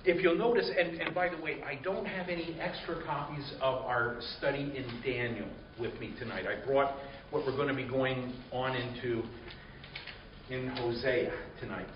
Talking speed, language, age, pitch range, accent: 175 wpm, Italian, 50-69, 125-170 Hz, American